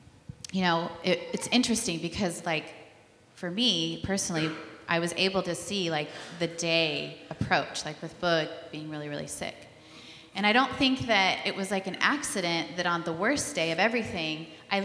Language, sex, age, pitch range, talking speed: English, female, 30-49, 160-200 Hz, 175 wpm